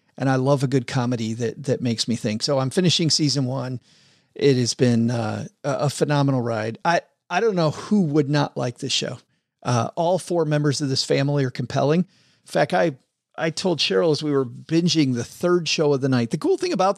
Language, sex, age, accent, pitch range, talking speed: English, male, 40-59, American, 130-165 Hz, 220 wpm